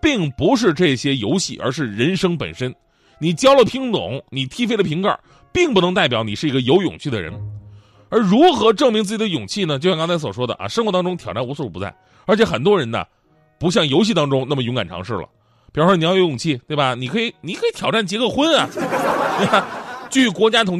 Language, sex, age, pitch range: Chinese, male, 30-49, 130-205 Hz